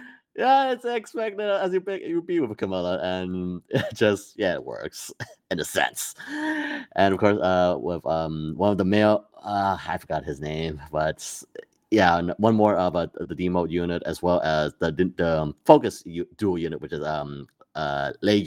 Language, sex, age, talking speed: English, male, 30-49, 180 wpm